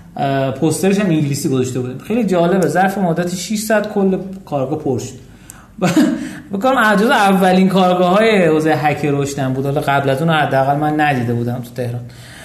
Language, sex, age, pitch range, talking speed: Persian, male, 30-49, 145-195 Hz, 150 wpm